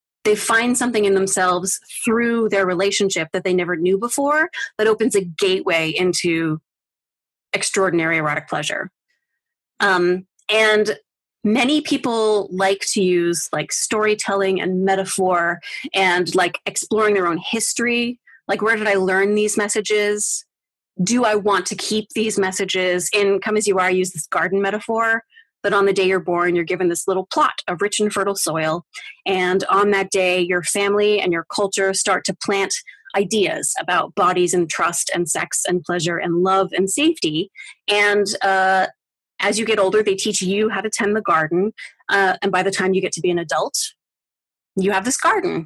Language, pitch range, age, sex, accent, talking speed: English, 185-225 Hz, 30-49, female, American, 175 wpm